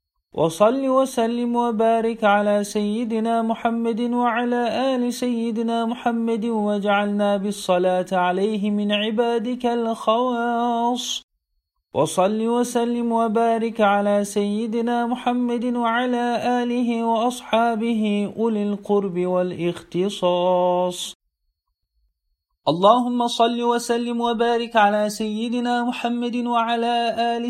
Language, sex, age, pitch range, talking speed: Turkish, male, 40-59, 200-235 Hz, 80 wpm